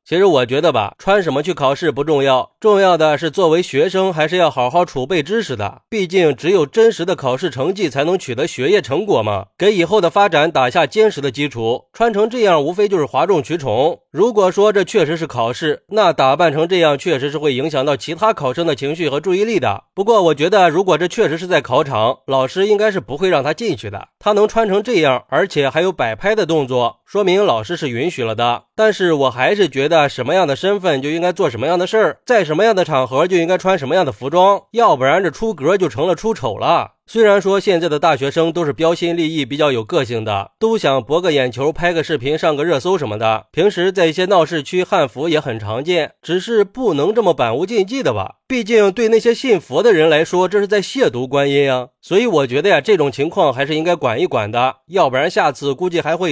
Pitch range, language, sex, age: 145-205 Hz, Chinese, male, 30-49